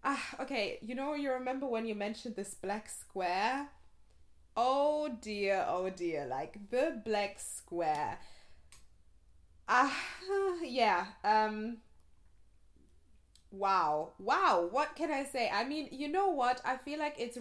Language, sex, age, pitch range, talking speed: English, female, 20-39, 185-245 Hz, 140 wpm